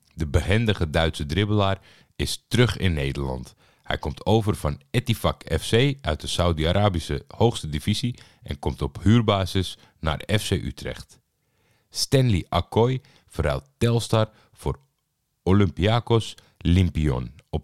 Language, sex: Dutch, male